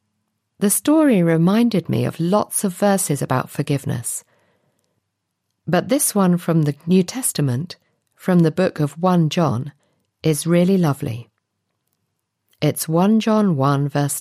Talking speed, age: 130 wpm, 50-69